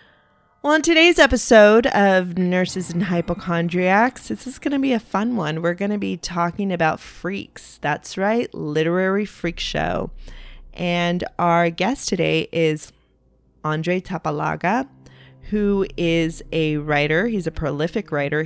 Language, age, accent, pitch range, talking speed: English, 20-39, American, 150-180 Hz, 140 wpm